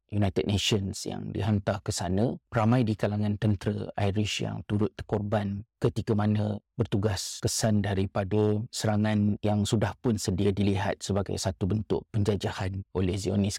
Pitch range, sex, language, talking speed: 100-115 Hz, male, Malay, 135 wpm